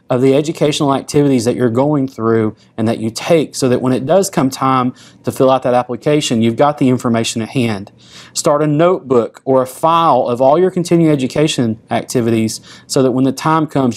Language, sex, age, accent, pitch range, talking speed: English, male, 30-49, American, 125-155 Hz, 205 wpm